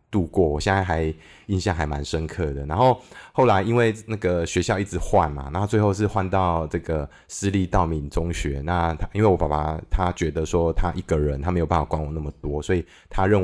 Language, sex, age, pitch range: Chinese, male, 20-39, 80-105 Hz